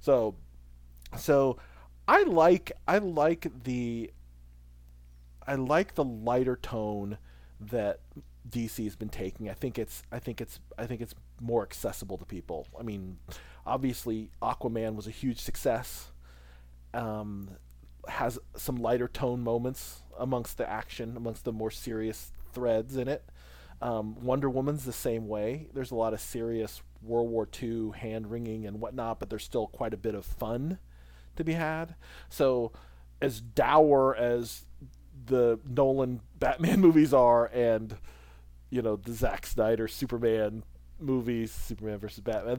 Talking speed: 145 wpm